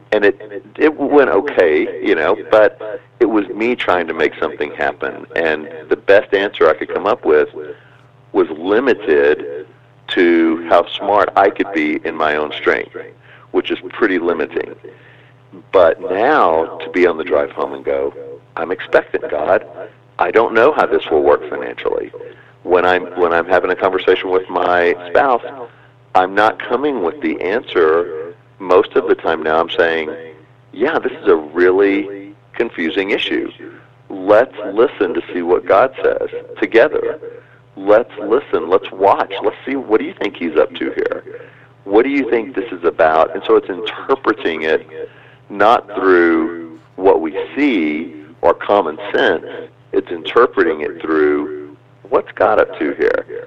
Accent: American